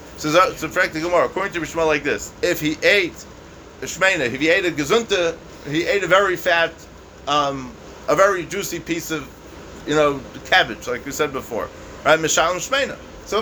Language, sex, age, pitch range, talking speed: English, male, 30-49, 150-185 Hz, 170 wpm